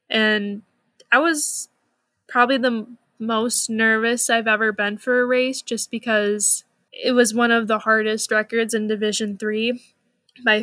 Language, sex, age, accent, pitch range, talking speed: English, female, 10-29, American, 215-245 Hz, 150 wpm